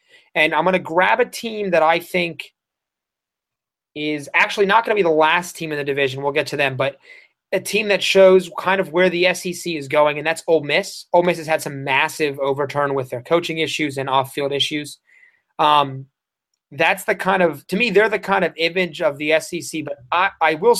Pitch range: 140-185 Hz